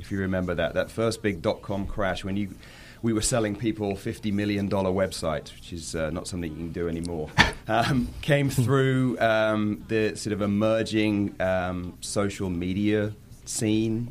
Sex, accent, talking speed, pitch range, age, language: male, British, 165 wpm, 95-110 Hz, 30-49, English